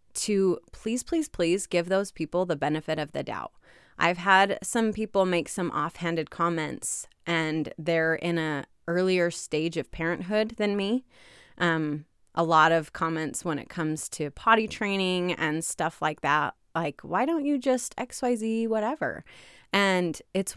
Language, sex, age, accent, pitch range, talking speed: English, female, 30-49, American, 160-210 Hz, 165 wpm